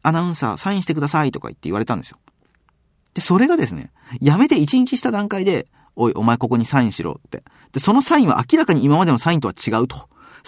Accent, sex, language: native, male, Japanese